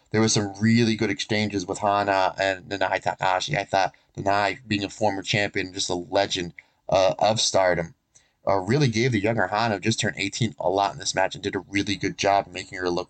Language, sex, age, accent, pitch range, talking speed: English, male, 30-49, American, 100-120 Hz, 225 wpm